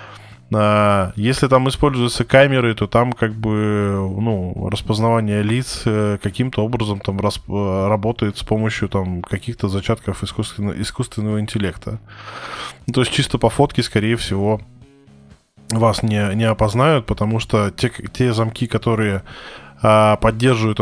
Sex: male